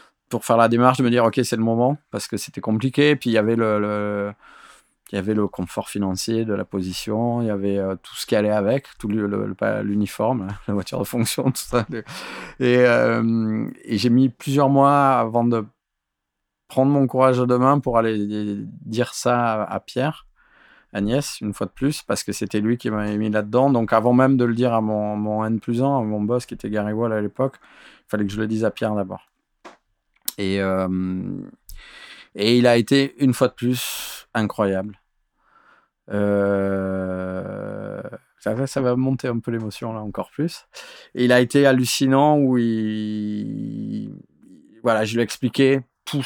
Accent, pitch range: French, 105-125 Hz